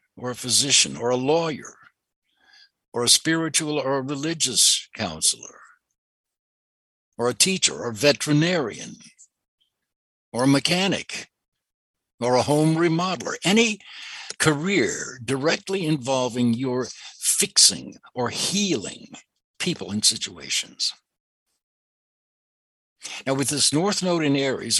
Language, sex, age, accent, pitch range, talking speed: English, male, 60-79, American, 125-170 Hz, 105 wpm